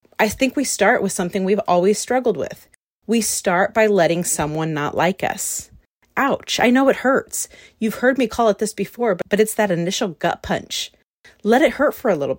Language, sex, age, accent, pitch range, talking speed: English, female, 30-49, American, 175-240 Hz, 205 wpm